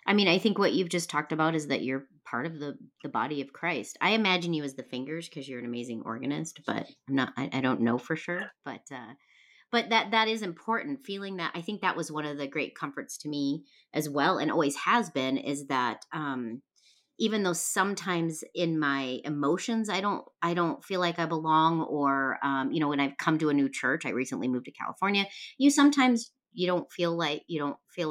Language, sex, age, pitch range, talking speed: English, female, 30-49, 130-180 Hz, 230 wpm